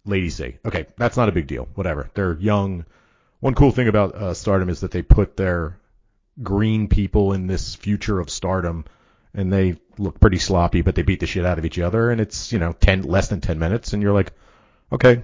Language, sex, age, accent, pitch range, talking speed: English, male, 40-59, American, 85-110 Hz, 220 wpm